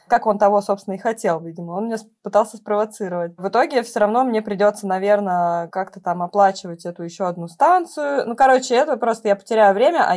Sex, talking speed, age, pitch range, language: female, 195 wpm, 20-39, 195-245 Hz, Russian